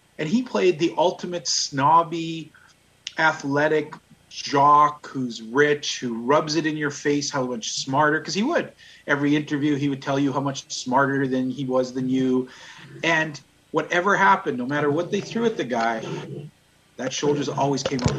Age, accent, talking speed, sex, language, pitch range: 30-49, American, 170 wpm, male, English, 135-165 Hz